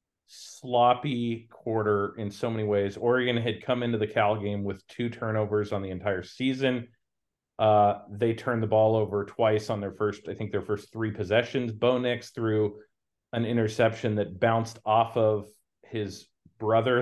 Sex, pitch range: male, 100-120 Hz